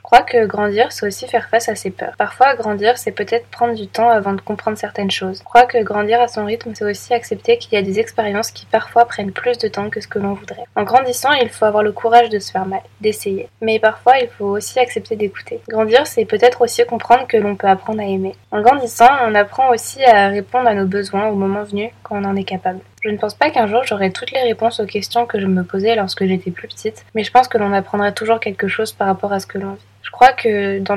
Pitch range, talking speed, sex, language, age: 200-235 Hz, 265 wpm, female, French, 20-39